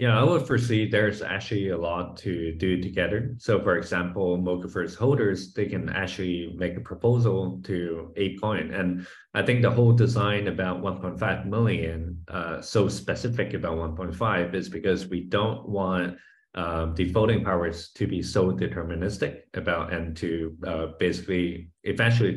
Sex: male